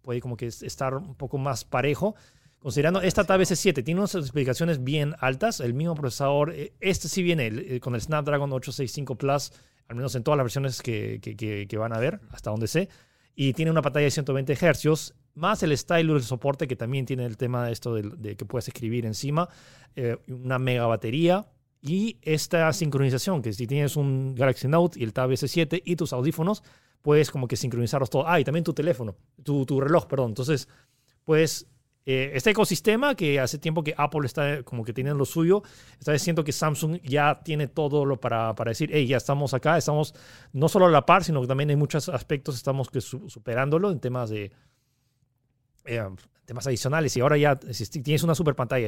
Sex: male